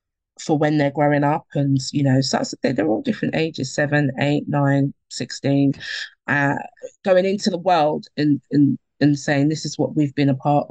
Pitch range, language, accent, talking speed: 135-150 Hz, English, British, 190 wpm